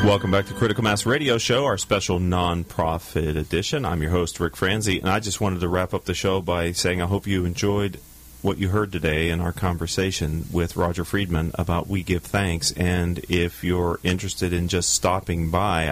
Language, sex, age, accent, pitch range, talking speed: English, male, 40-59, American, 85-105 Hz, 200 wpm